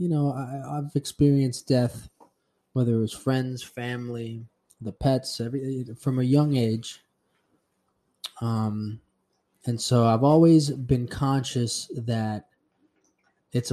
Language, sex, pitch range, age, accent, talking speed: English, male, 115-140 Hz, 20-39, American, 120 wpm